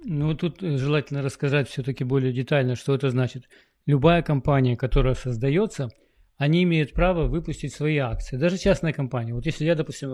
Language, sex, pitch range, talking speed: English, male, 130-170 Hz, 160 wpm